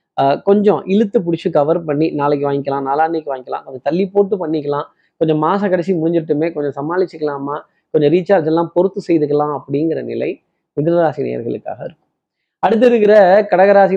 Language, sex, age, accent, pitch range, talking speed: Tamil, male, 20-39, native, 145-185 Hz, 140 wpm